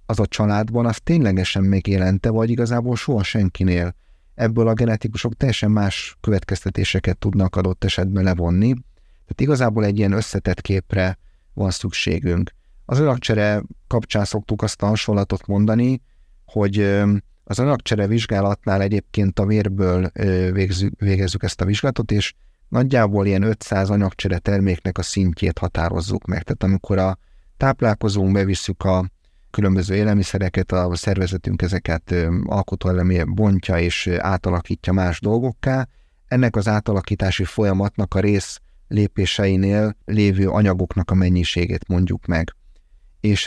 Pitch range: 90-105 Hz